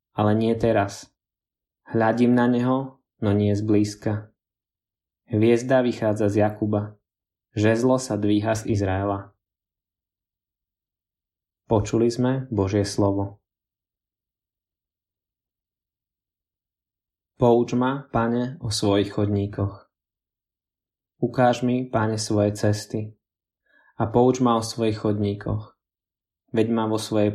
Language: Slovak